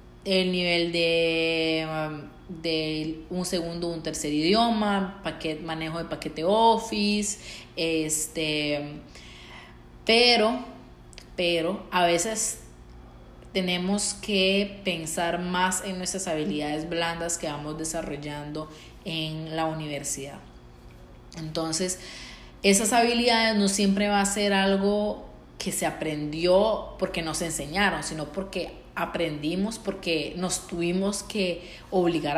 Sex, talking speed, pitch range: female, 105 wpm, 160-190 Hz